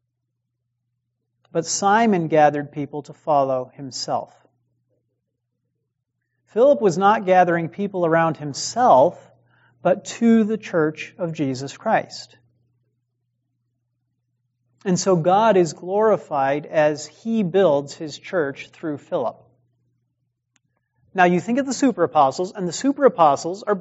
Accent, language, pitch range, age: American, English, 125-175 Hz, 40-59